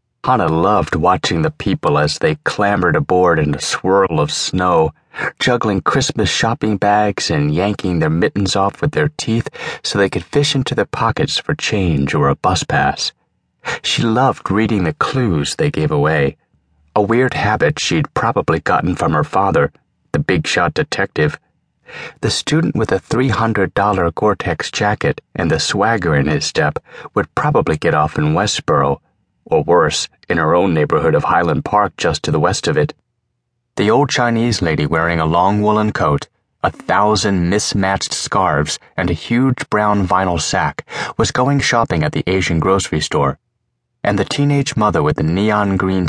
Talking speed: 165 wpm